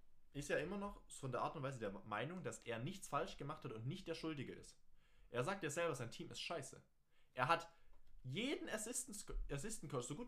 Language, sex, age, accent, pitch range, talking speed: German, male, 20-39, German, 105-145 Hz, 230 wpm